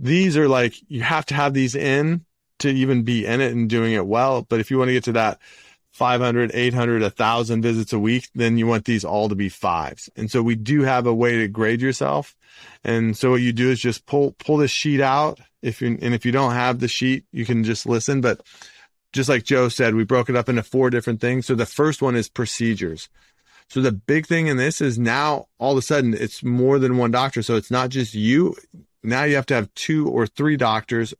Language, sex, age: English, male, 30-49